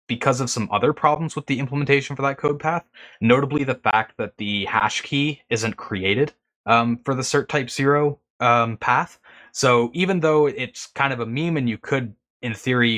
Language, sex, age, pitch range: English, male, 20-39, 100-135 Hz